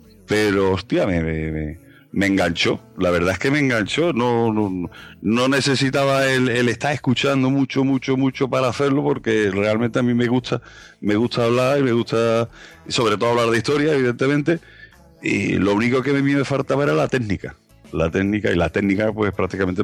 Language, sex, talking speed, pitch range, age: Spanish, male, 185 wpm, 90-120 Hz, 30-49